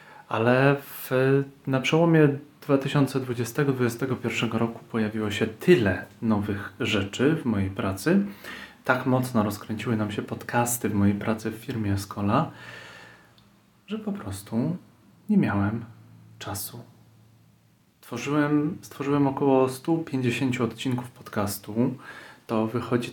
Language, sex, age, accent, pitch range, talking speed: Polish, male, 30-49, native, 110-135 Hz, 100 wpm